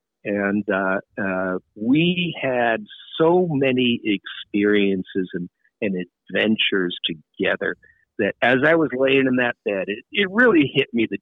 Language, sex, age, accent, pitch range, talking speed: English, male, 50-69, American, 95-130 Hz, 140 wpm